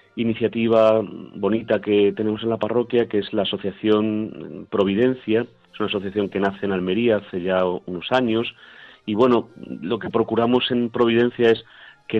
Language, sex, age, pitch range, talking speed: Spanish, male, 40-59, 95-115 Hz, 155 wpm